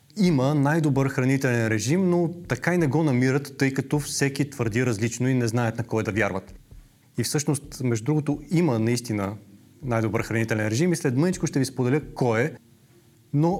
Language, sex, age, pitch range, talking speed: Bulgarian, male, 30-49, 115-145 Hz, 175 wpm